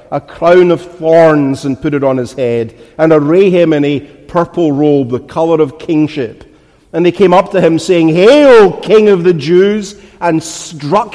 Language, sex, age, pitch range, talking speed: English, male, 50-69, 145-180 Hz, 190 wpm